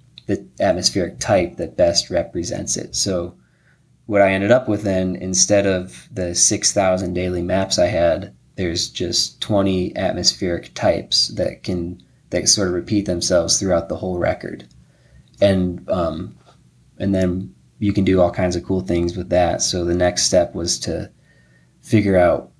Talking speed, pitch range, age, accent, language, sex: 160 wpm, 85-95 Hz, 20-39, American, English, male